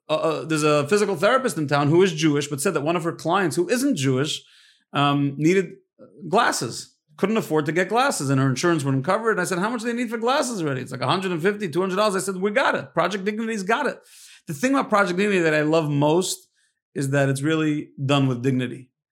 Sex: male